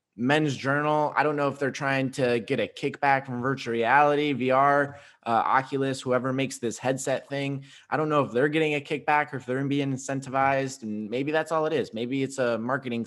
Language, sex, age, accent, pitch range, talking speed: English, male, 20-39, American, 120-145 Hz, 210 wpm